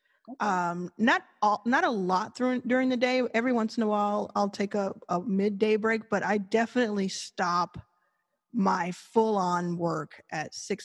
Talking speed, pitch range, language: 165 wpm, 175-210 Hz, English